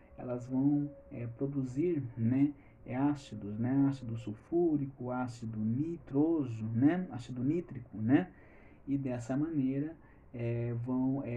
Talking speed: 95 wpm